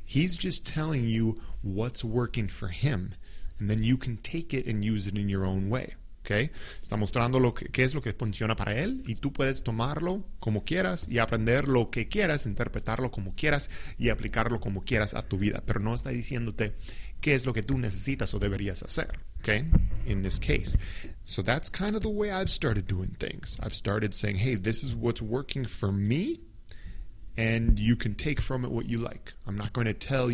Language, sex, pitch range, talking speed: English, male, 100-120 Hz, 205 wpm